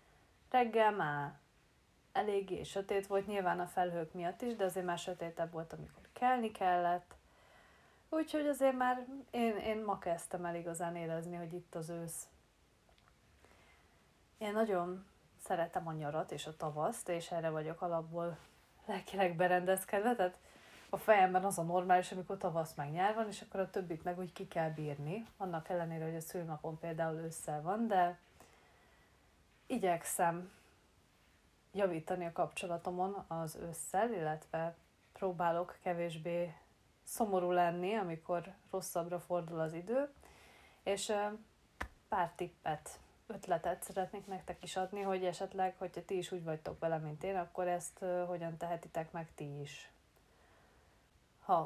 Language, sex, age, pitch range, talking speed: Hungarian, female, 30-49, 165-195 Hz, 135 wpm